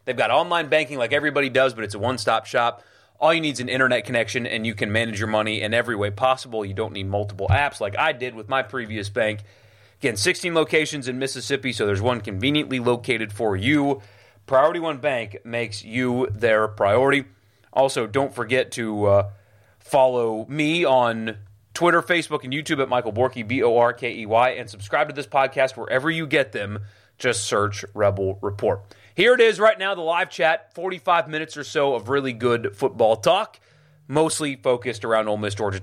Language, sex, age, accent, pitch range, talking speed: English, male, 30-49, American, 105-155 Hz, 190 wpm